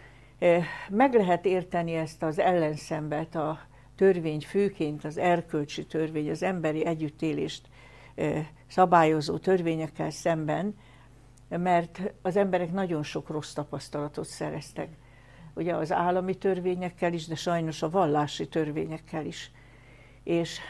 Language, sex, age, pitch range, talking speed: Hungarian, female, 60-79, 150-175 Hz, 110 wpm